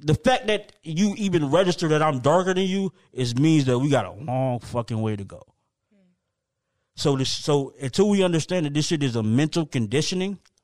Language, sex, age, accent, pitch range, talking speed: English, male, 20-39, American, 135-170 Hz, 195 wpm